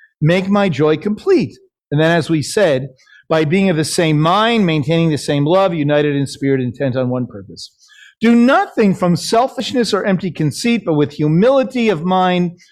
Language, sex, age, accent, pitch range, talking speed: English, male, 40-59, American, 145-205 Hz, 180 wpm